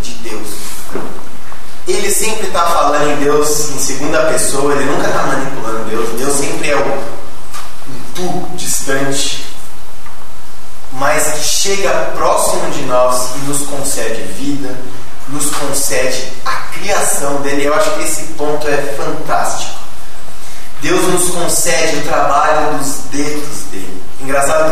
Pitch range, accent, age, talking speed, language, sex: 130-155 Hz, Brazilian, 20-39, 125 wpm, Portuguese, male